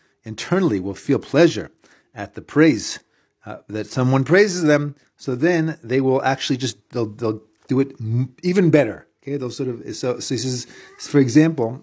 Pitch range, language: 120-165 Hz, English